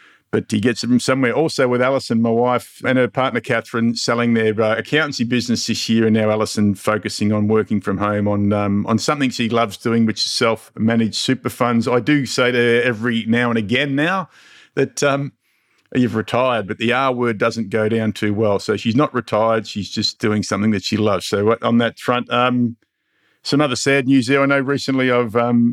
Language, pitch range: English, 110-130 Hz